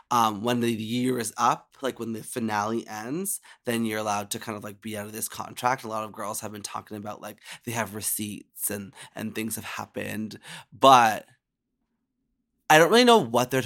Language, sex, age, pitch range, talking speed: English, male, 20-39, 110-135 Hz, 205 wpm